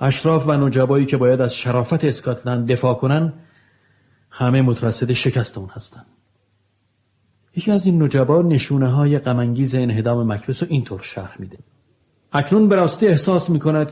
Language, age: Persian, 40-59